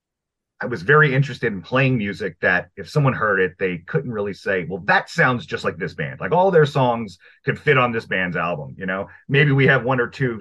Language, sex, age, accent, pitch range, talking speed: English, male, 30-49, American, 80-130 Hz, 235 wpm